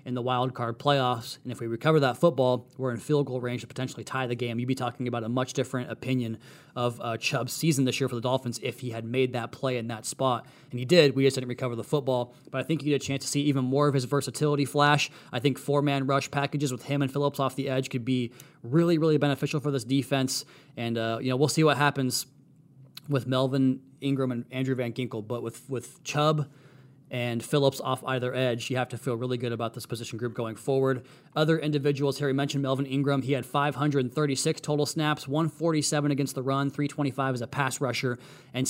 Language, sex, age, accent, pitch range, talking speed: English, male, 20-39, American, 125-145 Hz, 230 wpm